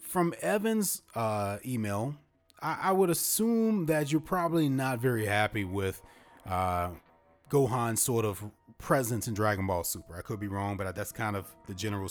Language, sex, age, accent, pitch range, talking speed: English, male, 30-49, American, 105-155 Hz, 170 wpm